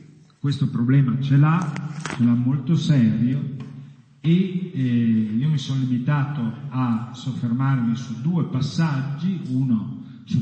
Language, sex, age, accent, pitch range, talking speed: Italian, male, 50-69, native, 125-180 Hz, 120 wpm